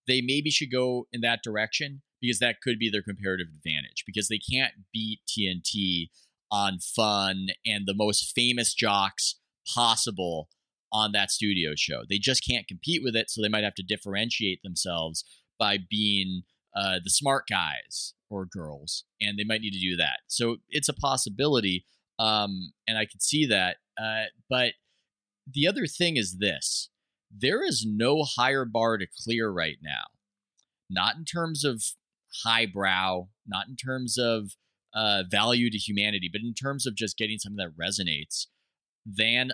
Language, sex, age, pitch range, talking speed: English, male, 30-49, 95-120 Hz, 165 wpm